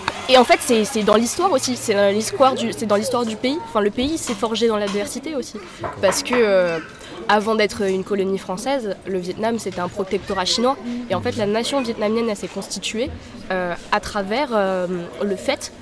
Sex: female